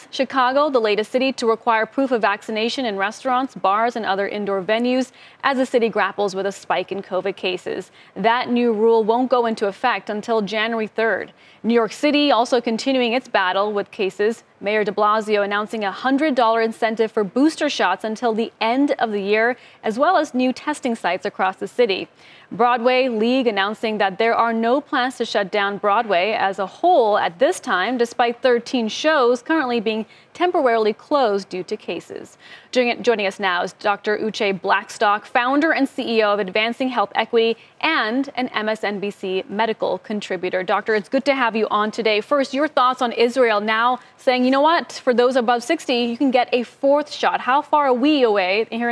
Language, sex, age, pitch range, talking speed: English, female, 30-49, 210-255 Hz, 185 wpm